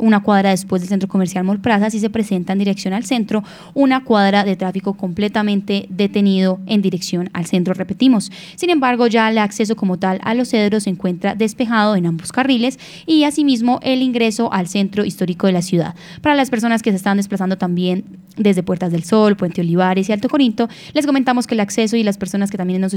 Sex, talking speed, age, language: female, 205 wpm, 10-29, Spanish